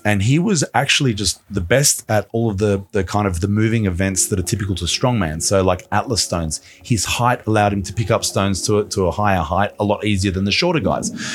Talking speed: 245 wpm